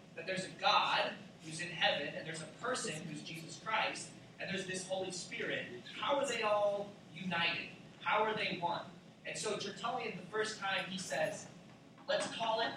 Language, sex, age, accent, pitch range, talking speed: English, male, 30-49, American, 175-215 Hz, 185 wpm